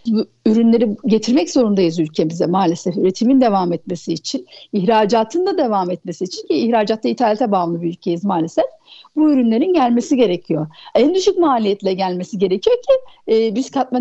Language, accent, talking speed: Turkish, native, 150 wpm